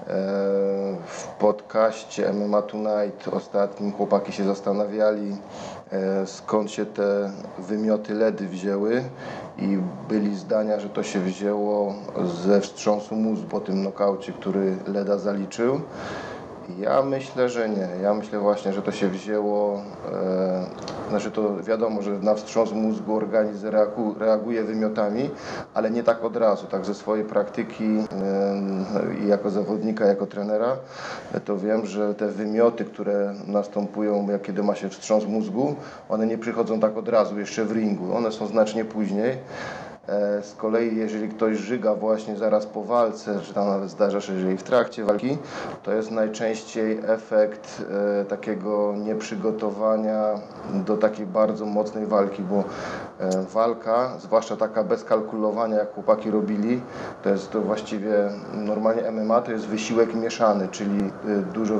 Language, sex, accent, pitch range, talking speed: Polish, male, native, 100-110 Hz, 135 wpm